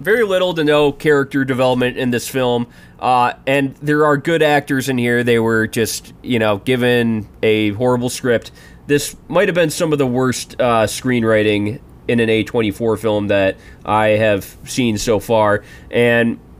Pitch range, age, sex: 110-145 Hz, 20-39, male